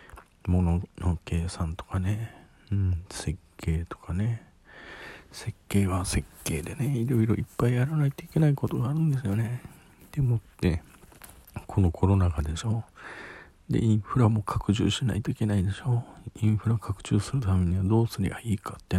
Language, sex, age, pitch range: Japanese, male, 40-59, 85-115 Hz